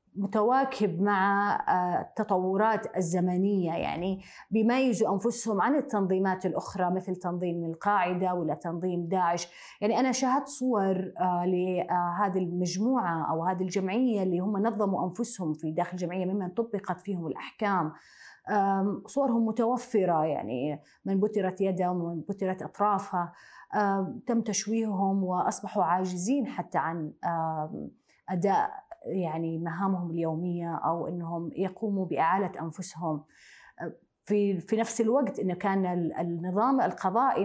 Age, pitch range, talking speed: 30-49, 170-210 Hz, 110 wpm